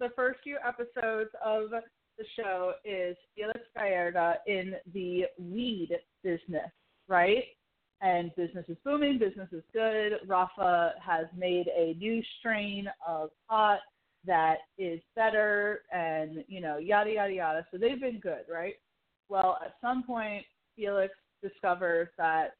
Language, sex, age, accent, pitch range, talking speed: English, female, 30-49, American, 170-225 Hz, 135 wpm